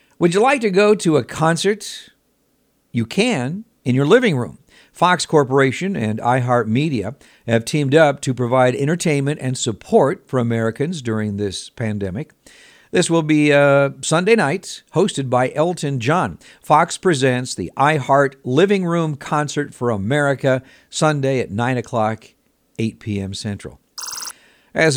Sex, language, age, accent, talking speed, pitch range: male, English, 60-79, American, 140 wpm, 115-150 Hz